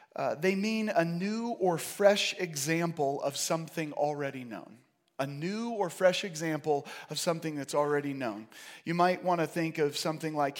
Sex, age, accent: male, 30-49, American